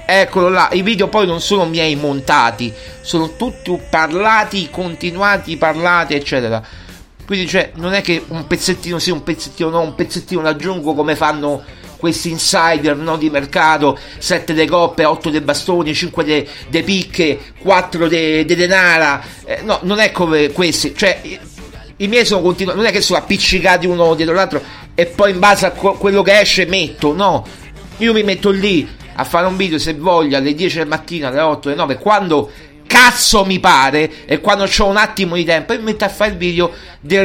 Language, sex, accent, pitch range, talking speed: Italian, male, native, 155-200 Hz, 190 wpm